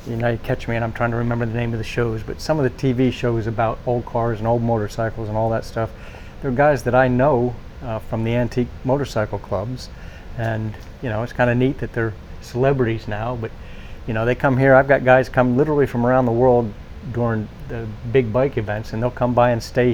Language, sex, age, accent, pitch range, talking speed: English, male, 50-69, American, 110-125 Hz, 240 wpm